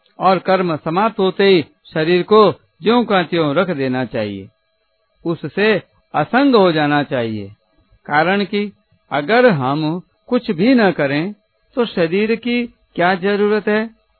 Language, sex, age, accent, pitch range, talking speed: Hindi, male, 60-79, native, 140-190 Hz, 135 wpm